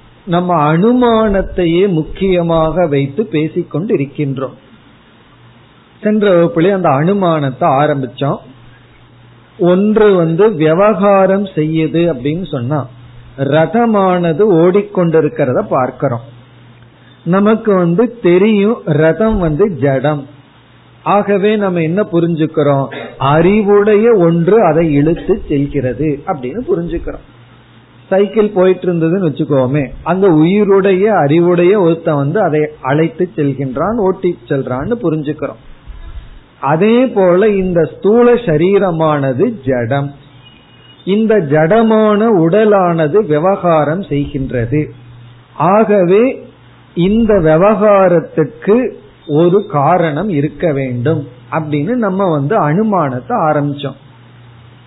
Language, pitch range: Tamil, 140-195 Hz